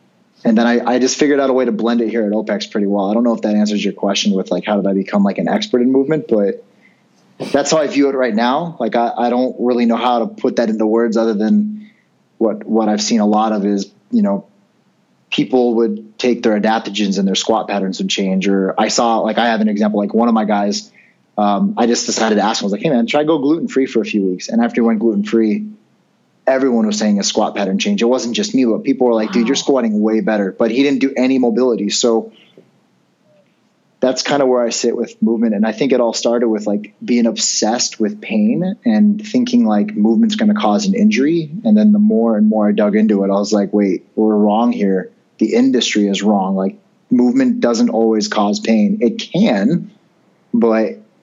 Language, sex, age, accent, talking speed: English, male, 30-49, American, 240 wpm